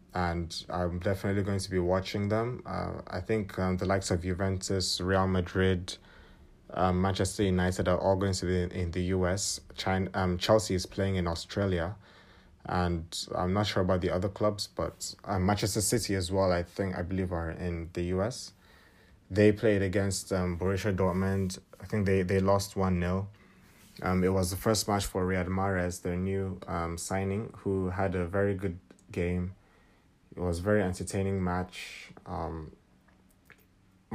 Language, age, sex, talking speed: English, 20-39, male, 170 wpm